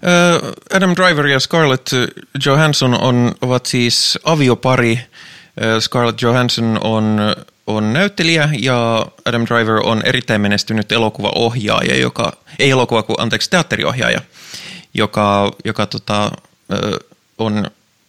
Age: 20-39